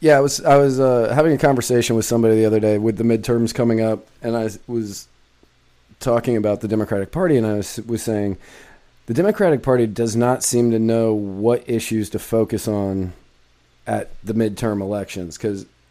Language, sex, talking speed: English, male, 190 wpm